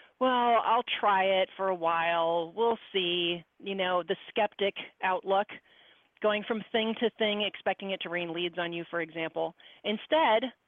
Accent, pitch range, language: American, 180-230 Hz, English